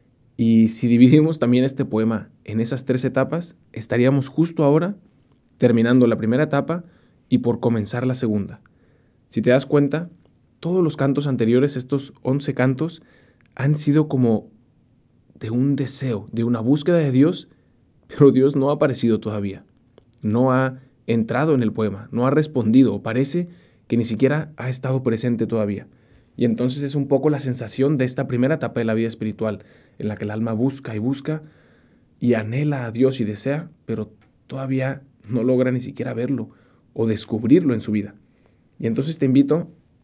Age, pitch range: 20-39, 115-140 Hz